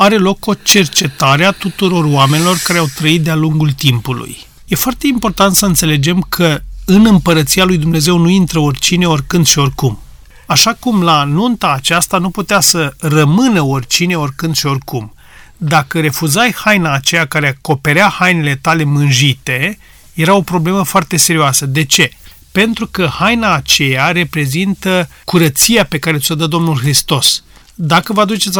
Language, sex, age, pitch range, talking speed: Romanian, male, 30-49, 150-195 Hz, 155 wpm